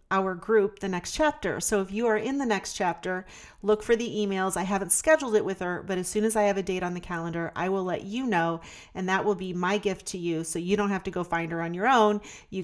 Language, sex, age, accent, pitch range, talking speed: English, female, 40-59, American, 170-210 Hz, 280 wpm